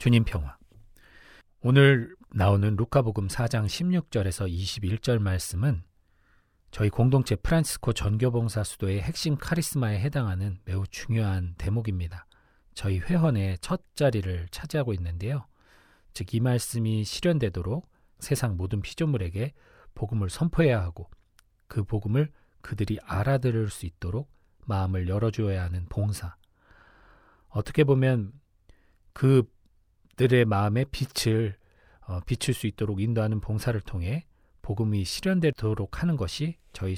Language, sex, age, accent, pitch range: Korean, male, 40-59, native, 95-135 Hz